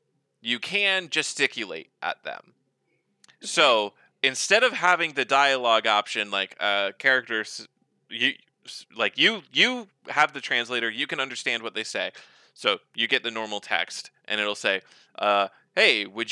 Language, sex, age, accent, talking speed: English, male, 20-39, American, 145 wpm